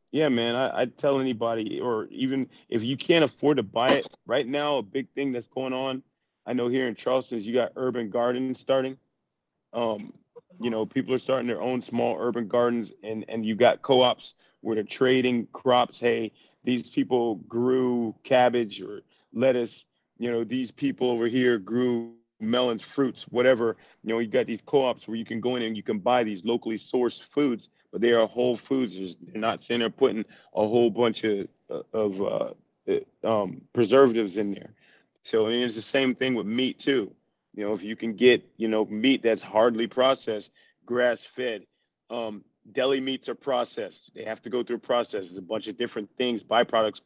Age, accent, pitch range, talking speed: 30-49, American, 115-130 Hz, 185 wpm